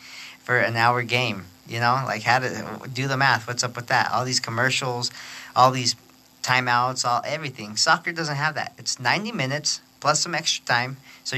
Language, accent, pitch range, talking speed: English, American, 115-130 Hz, 185 wpm